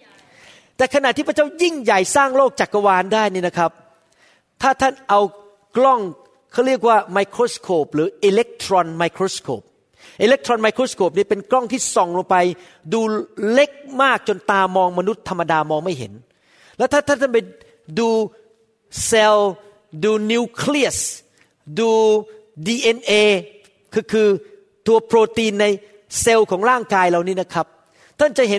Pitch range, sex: 195-265 Hz, male